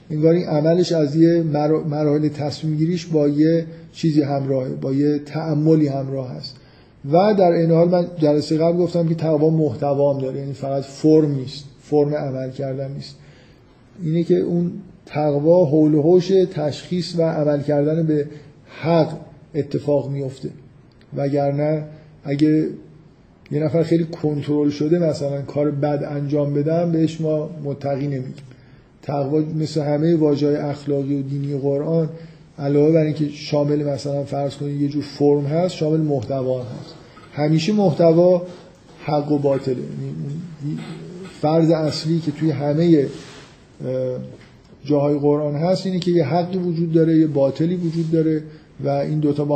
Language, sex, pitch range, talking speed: Persian, male, 145-165 Hz, 140 wpm